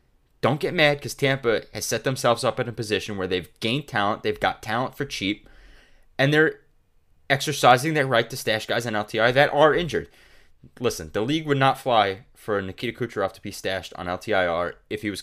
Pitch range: 95-135 Hz